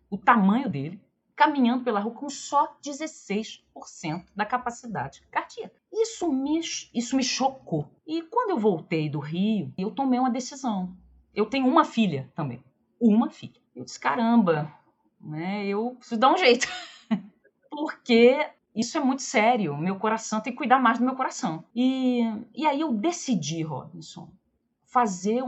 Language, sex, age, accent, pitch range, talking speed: Portuguese, female, 40-59, Brazilian, 190-275 Hz, 150 wpm